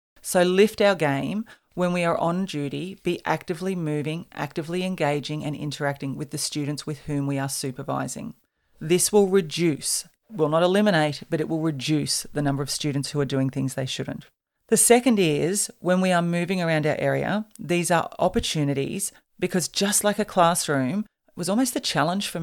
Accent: Australian